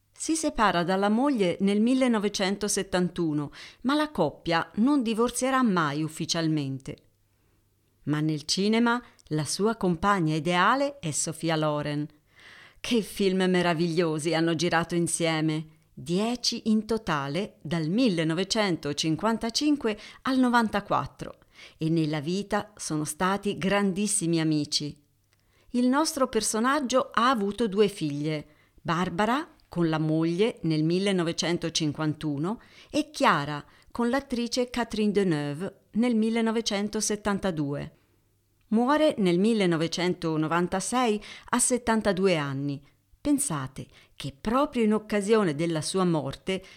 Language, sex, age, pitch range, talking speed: Italian, female, 40-59, 155-225 Hz, 100 wpm